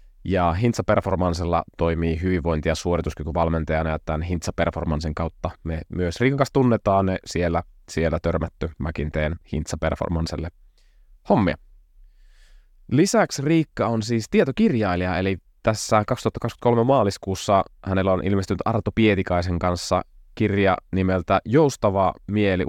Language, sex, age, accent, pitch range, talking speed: Finnish, male, 20-39, native, 85-105 Hz, 105 wpm